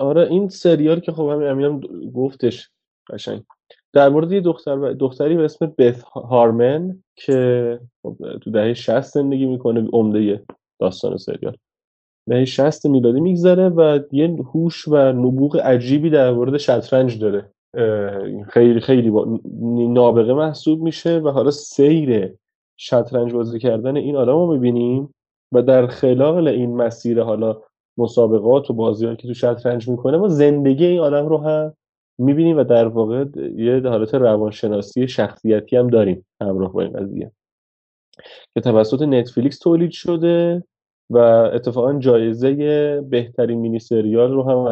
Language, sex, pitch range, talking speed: Persian, male, 115-145 Hz, 130 wpm